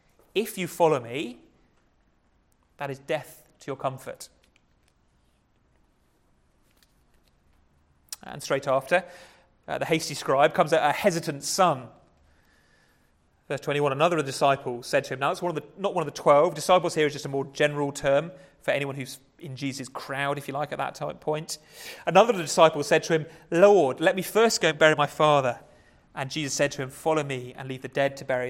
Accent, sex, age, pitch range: British, male, 30-49, 125-155 Hz